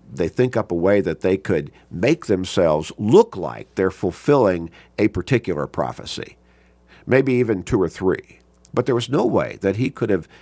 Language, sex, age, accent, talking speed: English, male, 50-69, American, 180 wpm